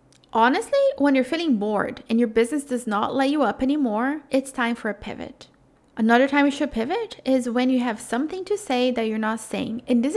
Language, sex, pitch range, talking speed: English, female, 225-270 Hz, 220 wpm